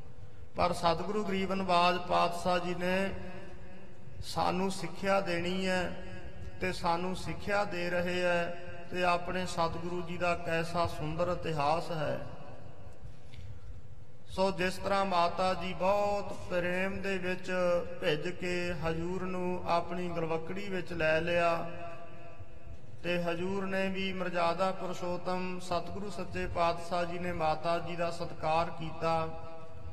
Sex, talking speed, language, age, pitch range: male, 115 wpm, English, 50-69, 165-185 Hz